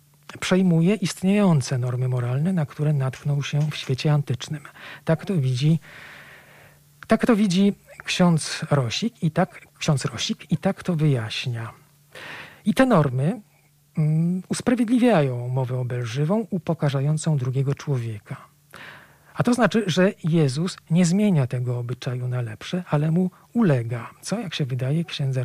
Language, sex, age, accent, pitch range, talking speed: Polish, male, 40-59, native, 135-165 Hz, 135 wpm